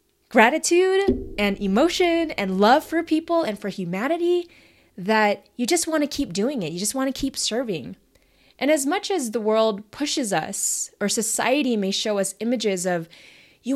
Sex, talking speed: female, 175 wpm